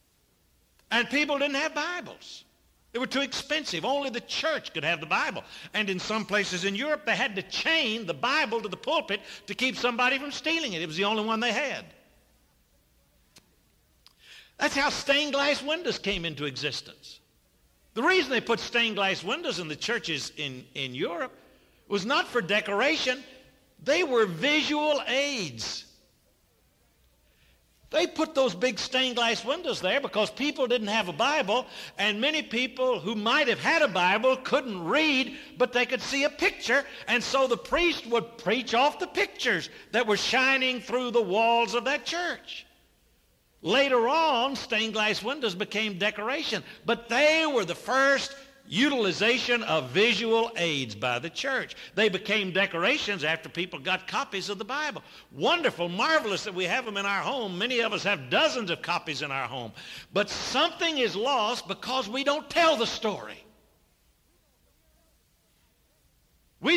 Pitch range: 200-280 Hz